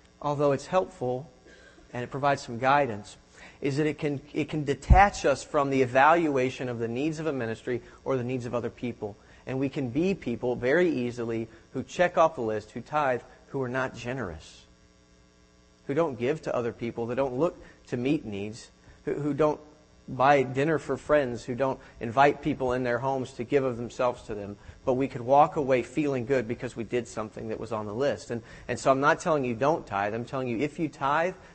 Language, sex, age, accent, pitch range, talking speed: English, male, 40-59, American, 110-150 Hz, 215 wpm